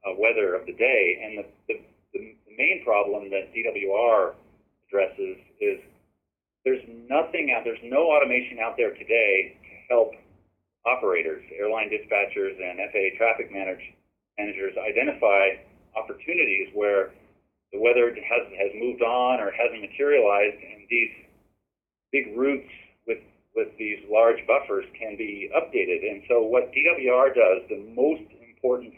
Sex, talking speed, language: male, 135 wpm, English